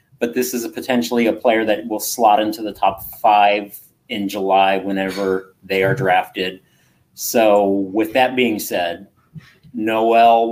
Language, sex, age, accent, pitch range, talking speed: English, male, 30-49, American, 100-115 Hz, 150 wpm